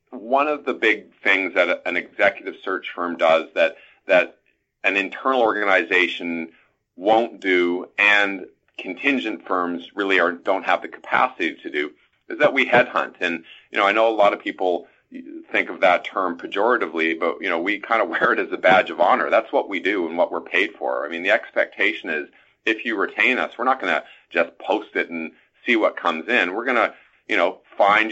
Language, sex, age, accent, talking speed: English, male, 40-59, American, 205 wpm